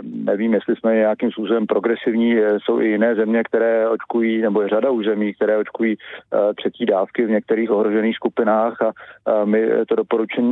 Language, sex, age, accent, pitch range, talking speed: Czech, male, 40-59, native, 105-115 Hz, 160 wpm